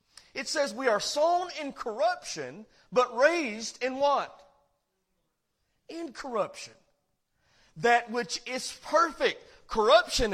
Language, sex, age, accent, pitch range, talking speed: English, male, 40-59, American, 205-290 Hz, 100 wpm